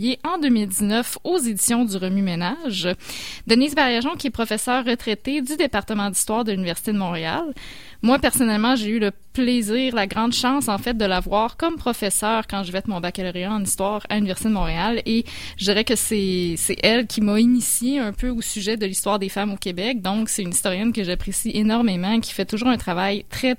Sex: female